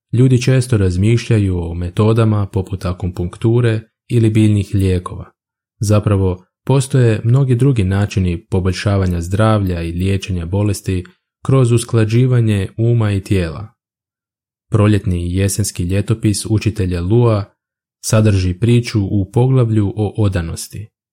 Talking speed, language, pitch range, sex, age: 100 wpm, Croatian, 95-115 Hz, male, 20-39